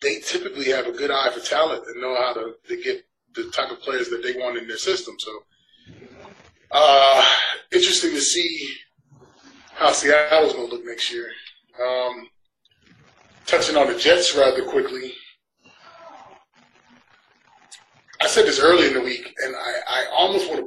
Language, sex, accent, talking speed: English, male, American, 165 wpm